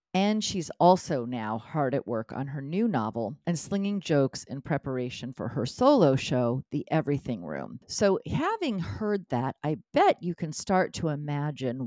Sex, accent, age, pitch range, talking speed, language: female, American, 50-69, 135-170 Hz, 170 wpm, English